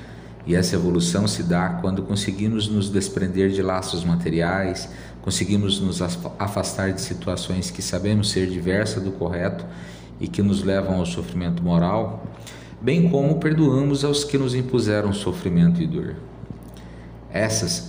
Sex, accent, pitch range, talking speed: male, Brazilian, 85-105 Hz, 140 wpm